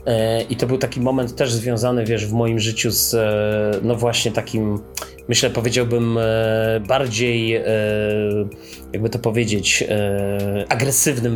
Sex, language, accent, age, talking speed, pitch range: male, Polish, native, 30-49, 115 wpm, 110-125 Hz